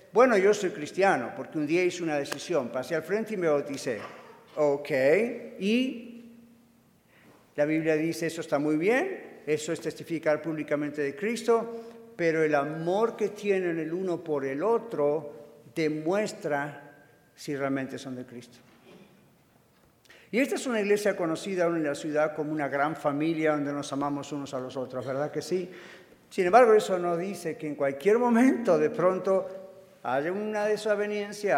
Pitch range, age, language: 145-195 Hz, 50-69, Spanish